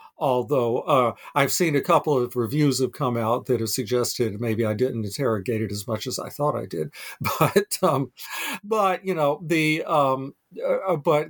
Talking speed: 185 wpm